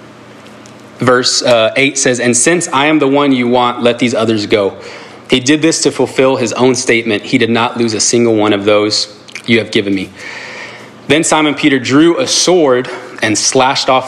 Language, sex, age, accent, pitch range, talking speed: English, male, 30-49, American, 115-135 Hz, 190 wpm